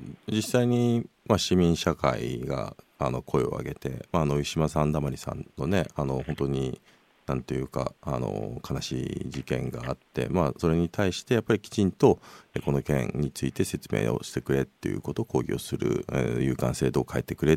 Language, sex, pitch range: Japanese, male, 70-95 Hz